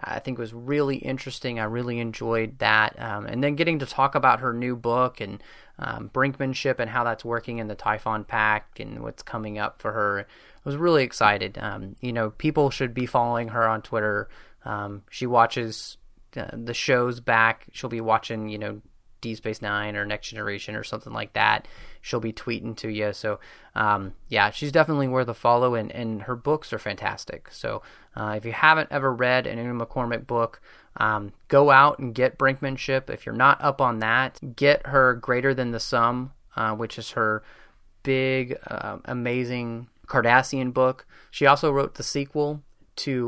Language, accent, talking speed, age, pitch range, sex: English, American, 190 wpm, 20-39, 110-130 Hz, male